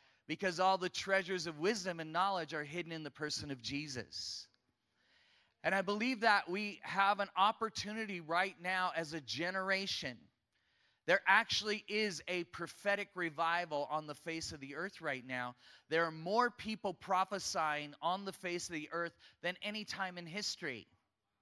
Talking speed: 160 wpm